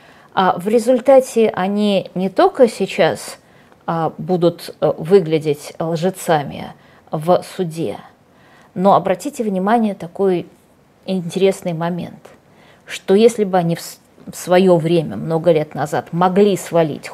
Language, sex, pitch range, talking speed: Russian, female, 170-225 Hz, 105 wpm